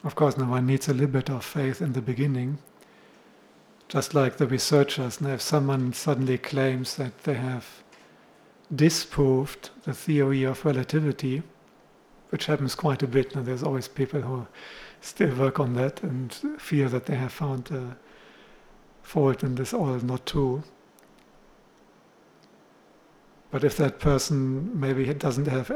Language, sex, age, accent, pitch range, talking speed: English, male, 50-69, German, 130-145 Hz, 150 wpm